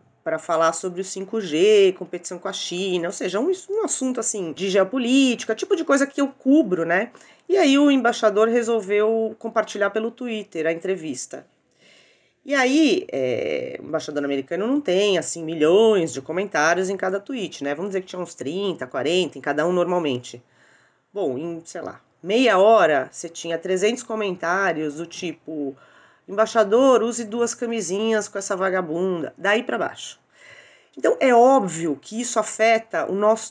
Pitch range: 175-235 Hz